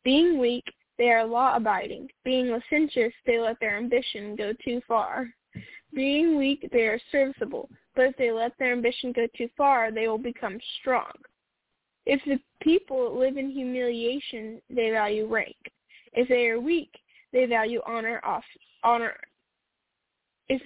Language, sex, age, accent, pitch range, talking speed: English, female, 10-29, American, 230-270 Hz, 145 wpm